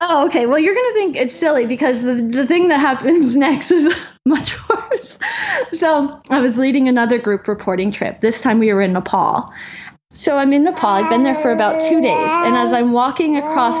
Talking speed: 215 wpm